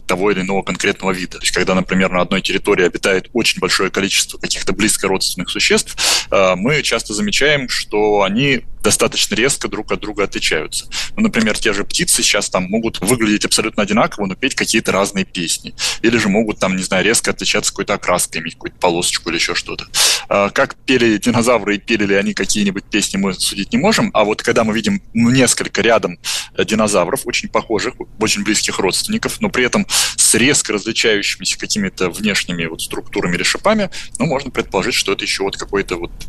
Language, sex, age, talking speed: Russian, male, 20-39, 180 wpm